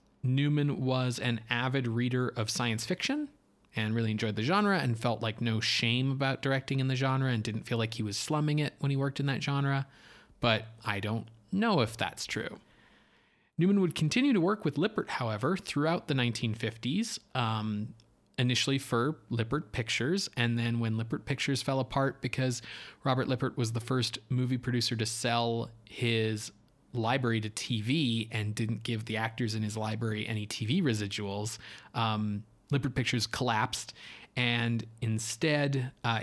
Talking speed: 165 wpm